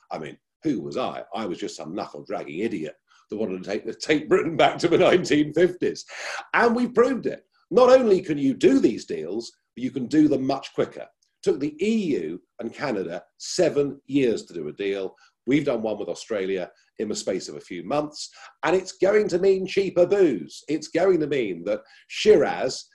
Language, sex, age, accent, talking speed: English, male, 50-69, British, 200 wpm